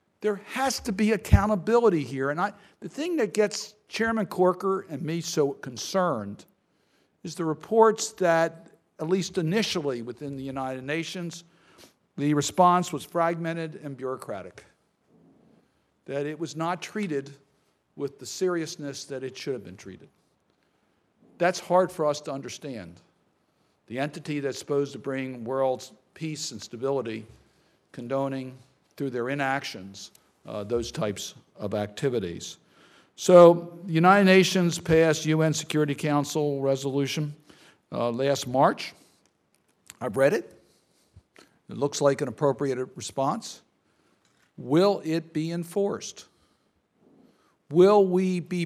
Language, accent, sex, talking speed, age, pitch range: English, American, male, 125 wpm, 60-79, 140-180 Hz